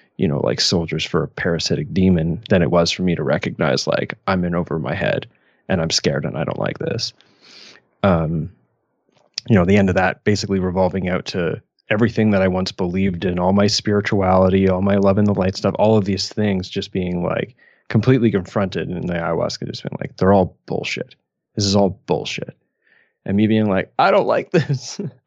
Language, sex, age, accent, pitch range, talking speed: English, male, 30-49, American, 95-110 Hz, 205 wpm